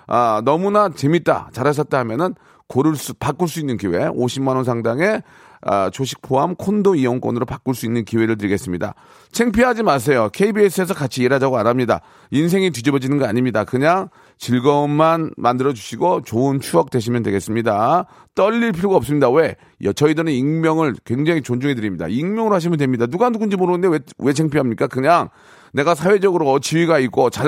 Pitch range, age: 125-185 Hz, 40-59